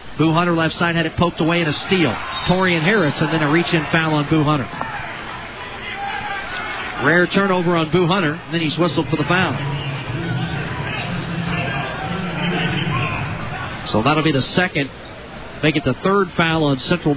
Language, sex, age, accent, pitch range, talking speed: English, male, 40-59, American, 150-175 Hz, 160 wpm